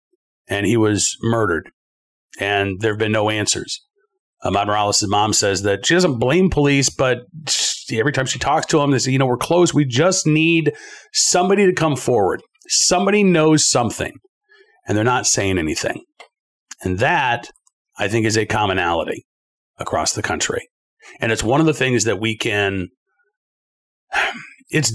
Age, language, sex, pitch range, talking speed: 40-59, English, male, 110-175 Hz, 165 wpm